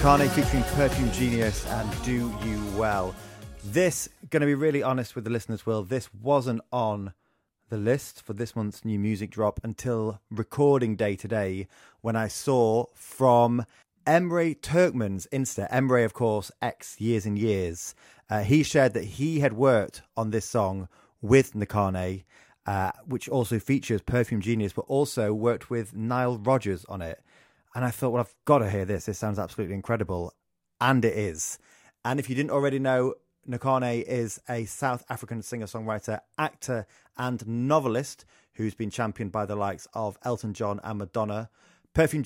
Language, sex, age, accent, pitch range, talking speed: English, male, 30-49, British, 105-125 Hz, 165 wpm